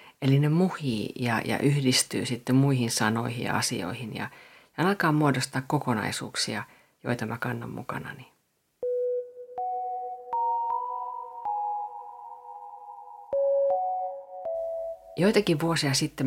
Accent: native